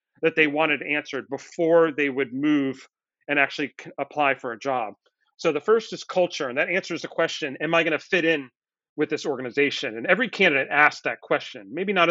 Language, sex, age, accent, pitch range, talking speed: English, male, 40-59, American, 145-165 Hz, 200 wpm